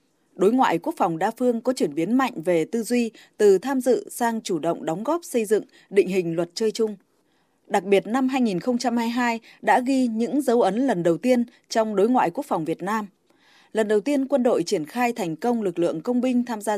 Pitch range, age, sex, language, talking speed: 185-255 Hz, 20-39, female, Vietnamese, 220 wpm